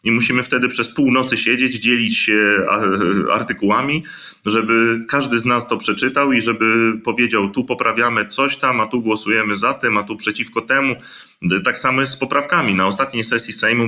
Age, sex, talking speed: 30-49, male, 175 wpm